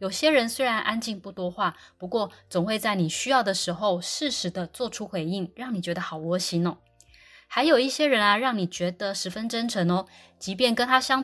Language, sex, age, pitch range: Chinese, female, 20-39, 180-230 Hz